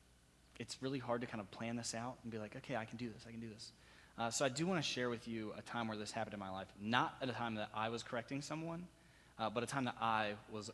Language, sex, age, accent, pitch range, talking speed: English, male, 30-49, American, 105-125 Hz, 300 wpm